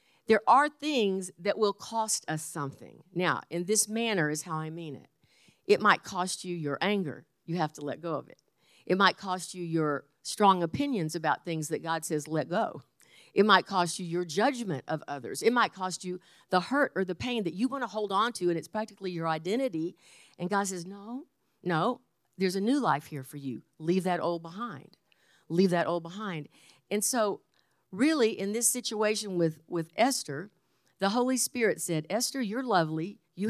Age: 50-69